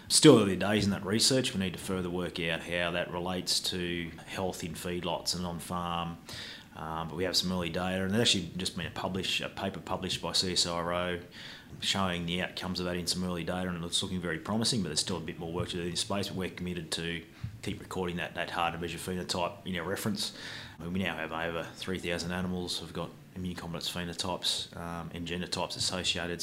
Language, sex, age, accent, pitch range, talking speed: English, male, 30-49, Australian, 85-105 Hz, 220 wpm